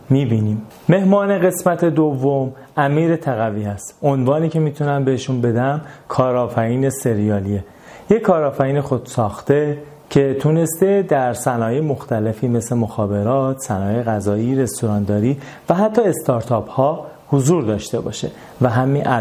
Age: 30-49